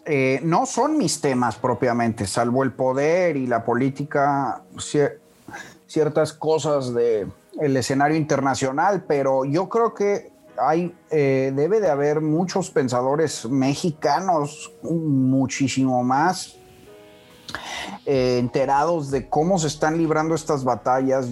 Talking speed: 120 wpm